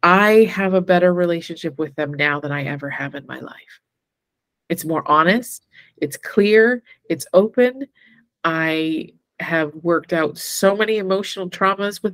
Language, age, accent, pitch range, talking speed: English, 30-49, American, 160-195 Hz, 155 wpm